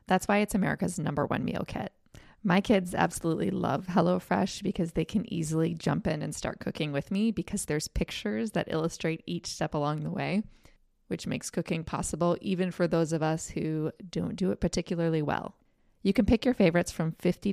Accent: American